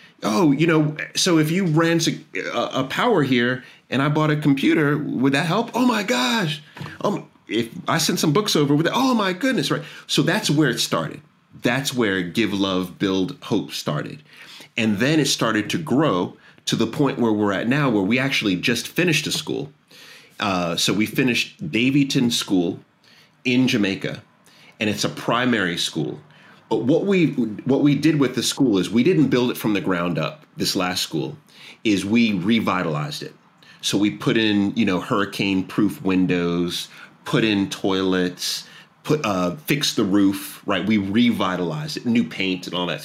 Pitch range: 95-150 Hz